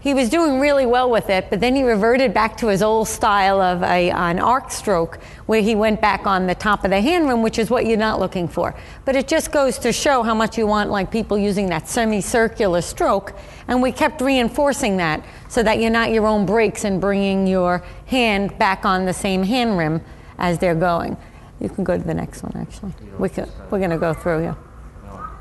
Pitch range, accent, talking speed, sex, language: 195-240 Hz, American, 225 wpm, female, English